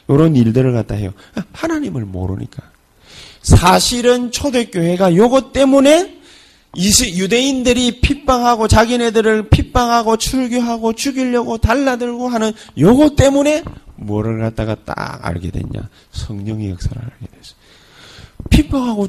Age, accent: 30-49, native